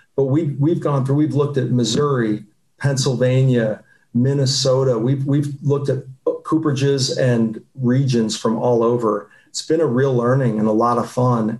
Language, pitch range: English, 120-135 Hz